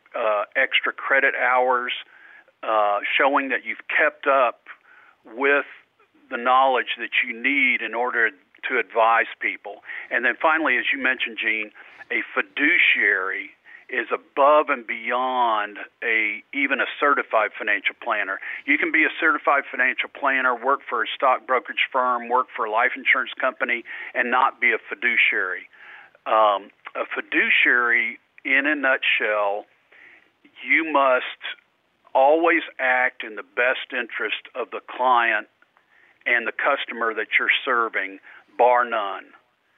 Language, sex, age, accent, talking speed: English, male, 50-69, American, 135 wpm